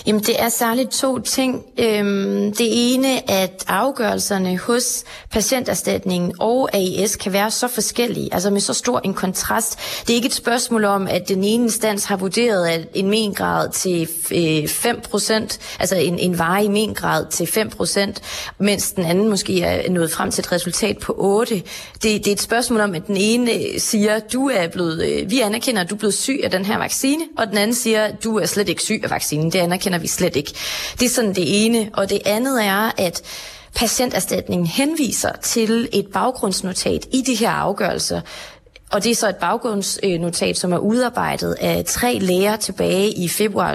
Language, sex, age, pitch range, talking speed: Danish, female, 30-49, 185-230 Hz, 180 wpm